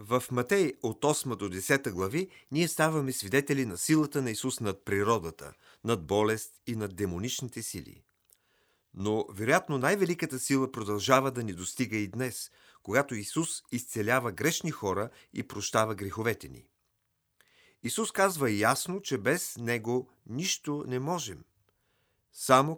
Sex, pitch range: male, 105-145 Hz